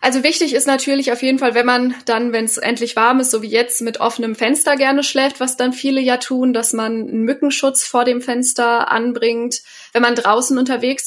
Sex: female